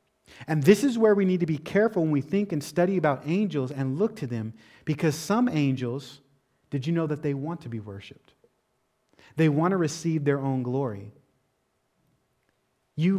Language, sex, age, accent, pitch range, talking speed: English, male, 30-49, American, 135-170 Hz, 180 wpm